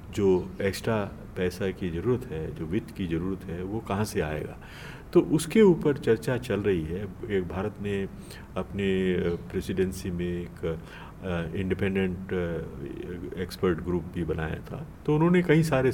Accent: native